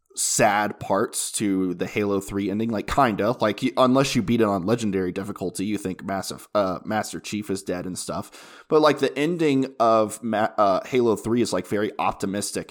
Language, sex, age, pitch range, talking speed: English, male, 20-39, 95-115 Hz, 190 wpm